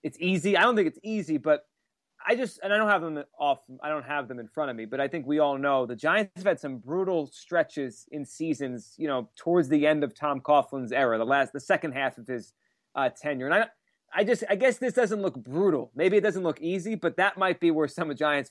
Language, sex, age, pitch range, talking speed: English, male, 30-49, 145-195 Hz, 265 wpm